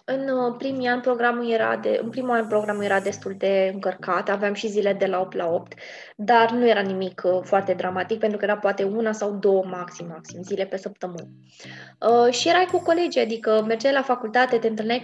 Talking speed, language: 210 wpm, Romanian